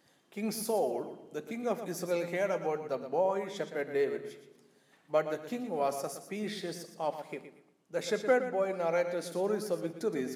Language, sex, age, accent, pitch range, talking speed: Malayalam, male, 50-69, native, 165-215 Hz, 150 wpm